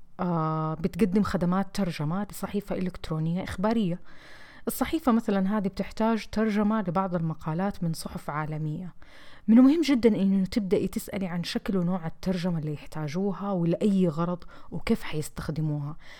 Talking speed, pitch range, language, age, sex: 120 wpm, 170-210 Hz, Arabic, 30-49, female